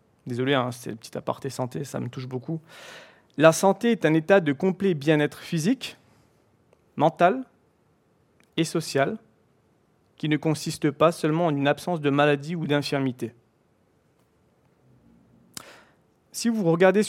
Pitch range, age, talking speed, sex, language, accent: 130-170 Hz, 40-59, 130 wpm, male, French, French